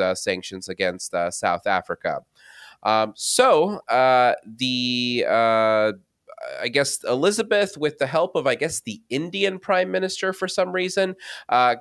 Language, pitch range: English, 110-150 Hz